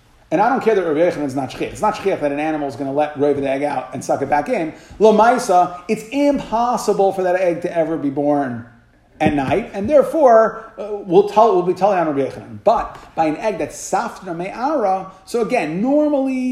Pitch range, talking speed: 145-195 Hz, 215 wpm